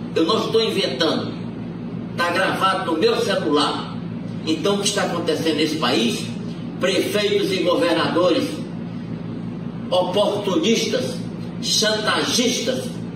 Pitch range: 160-205 Hz